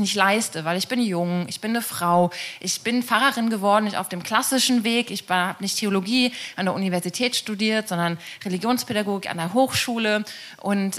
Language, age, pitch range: German, 20-39, 190-255 Hz